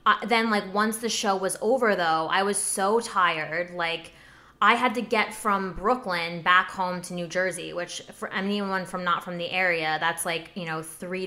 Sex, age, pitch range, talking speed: female, 20-39, 175-210 Hz, 195 wpm